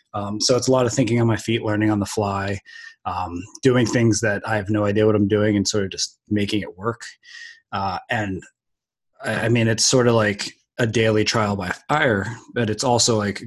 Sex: male